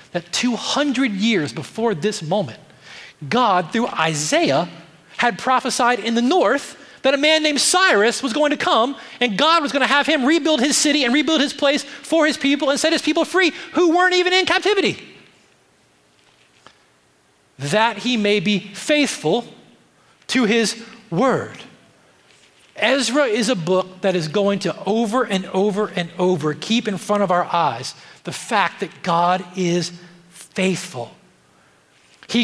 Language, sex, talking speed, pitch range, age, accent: English, male, 155 wpm, 200-285 Hz, 30-49, American